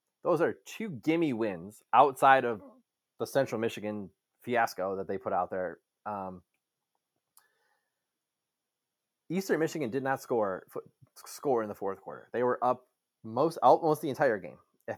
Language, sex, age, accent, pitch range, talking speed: English, male, 20-39, American, 105-145 Hz, 150 wpm